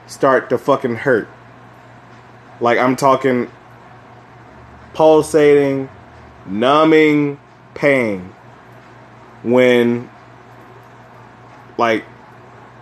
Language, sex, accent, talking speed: English, male, American, 55 wpm